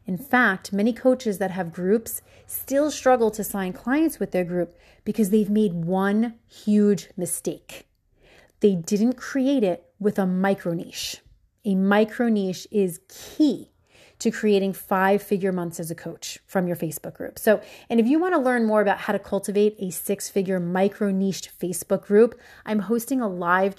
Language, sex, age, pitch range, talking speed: English, female, 30-49, 185-230 Hz, 170 wpm